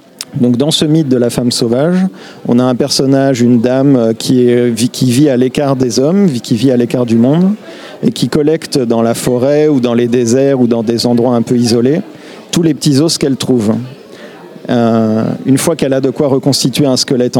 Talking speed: 210 wpm